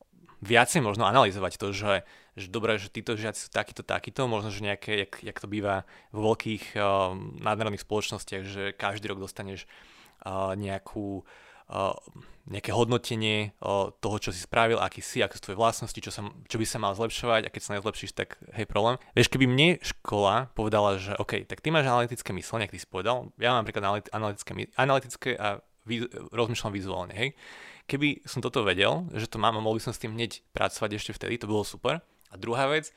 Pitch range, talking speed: 100-120 Hz, 195 wpm